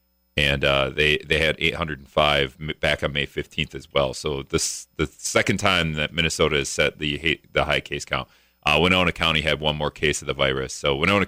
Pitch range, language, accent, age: 70-95 Hz, English, American, 30-49